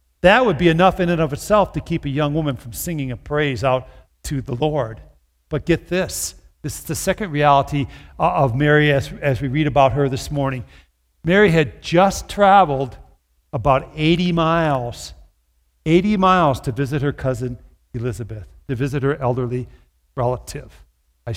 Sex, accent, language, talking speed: male, American, English, 165 wpm